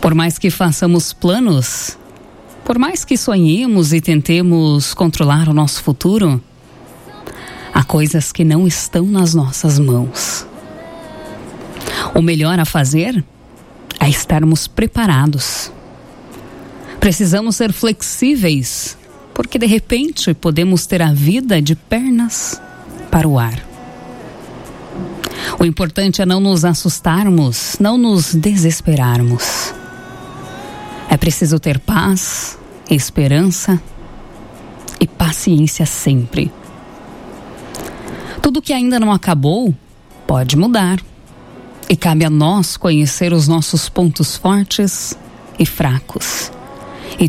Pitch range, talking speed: 150-190 Hz, 105 wpm